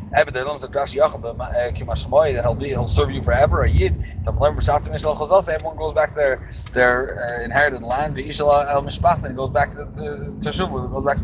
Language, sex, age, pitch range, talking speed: English, male, 30-49, 95-145 Hz, 115 wpm